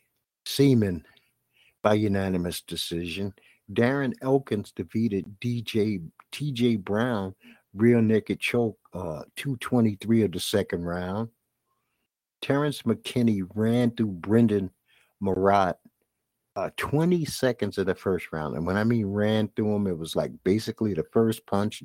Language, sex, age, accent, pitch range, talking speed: English, male, 60-79, American, 95-120 Hz, 125 wpm